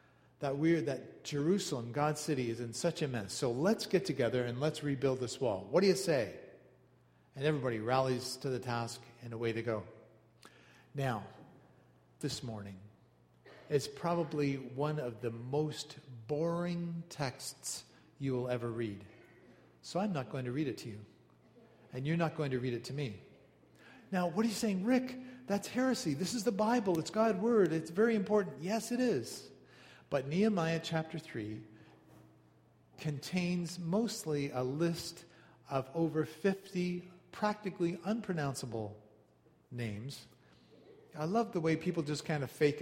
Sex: male